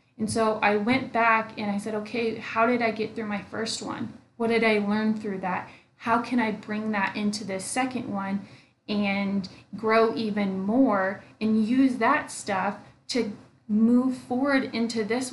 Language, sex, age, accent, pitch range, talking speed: English, female, 20-39, American, 210-255 Hz, 175 wpm